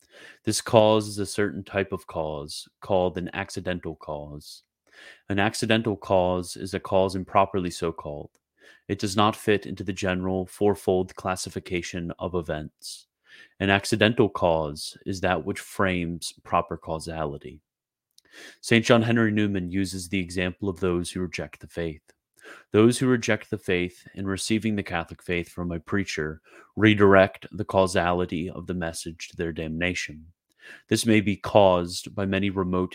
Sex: male